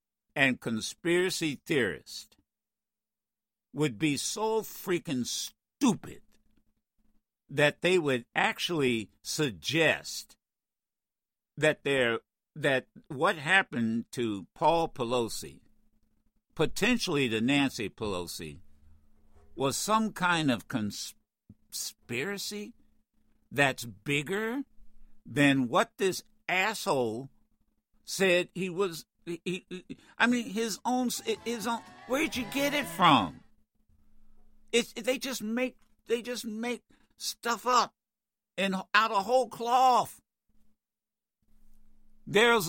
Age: 60-79